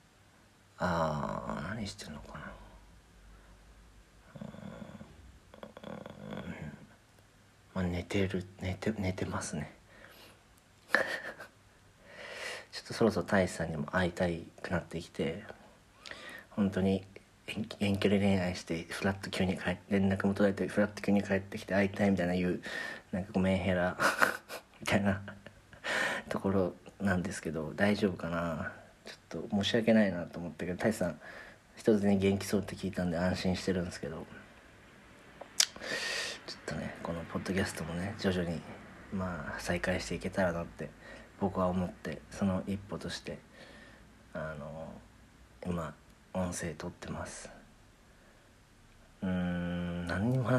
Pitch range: 90-100 Hz